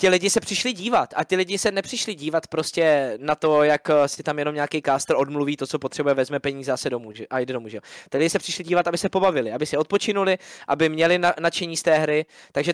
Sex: male